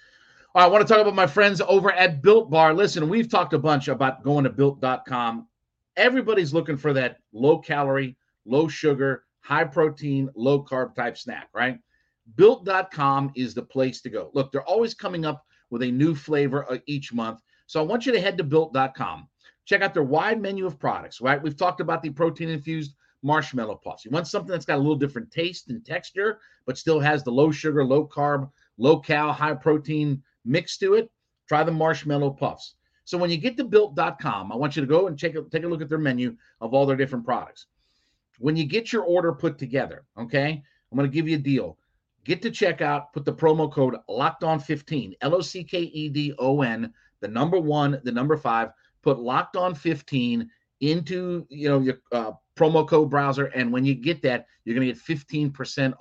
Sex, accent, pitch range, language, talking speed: male, American, 135-165 Hz, English, 200 wpm